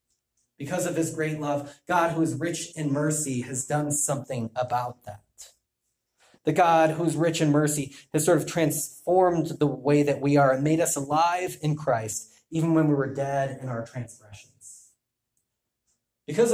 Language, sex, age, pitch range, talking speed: English, male, 30-49, 125-160 Hz, 170 wpm